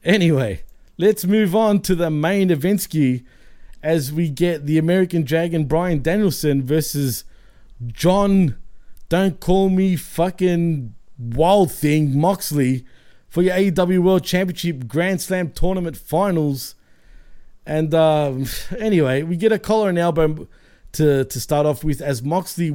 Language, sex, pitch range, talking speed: English, male, 140-180 Hz, 130 wpm